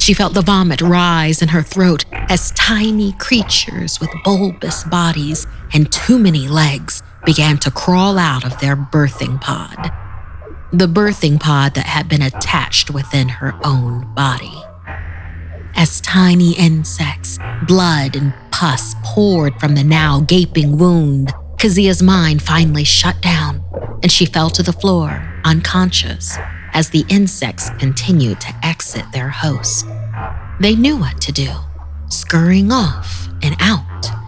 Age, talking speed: 40-59, 135 wpm